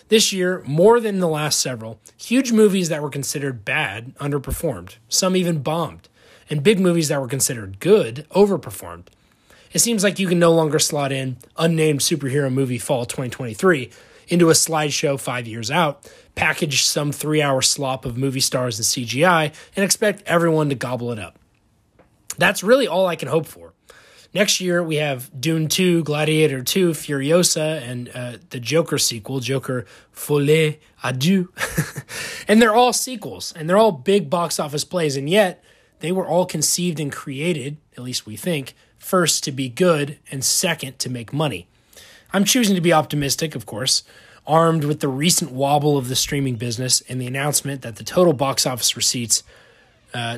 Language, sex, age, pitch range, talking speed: English, male, 20-39, 130-175 Hz, 170 wpm